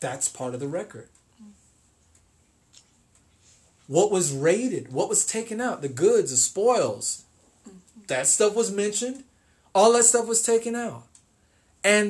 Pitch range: 135-210 Hz